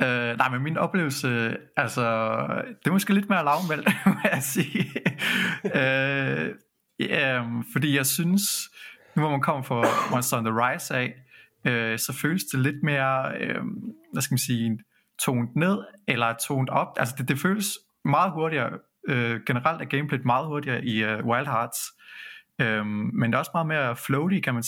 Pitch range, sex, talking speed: 120-155 Hz, male, 155 wpm